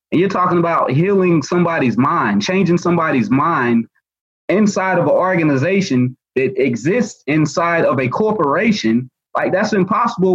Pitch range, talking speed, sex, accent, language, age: 150-195 Hz, 135 wpm, male, American, English, 30-49